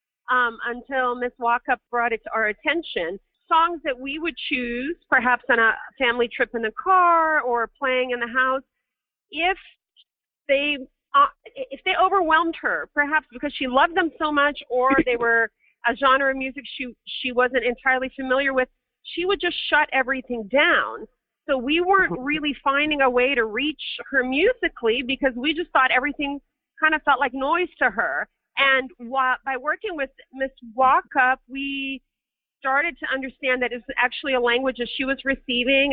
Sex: female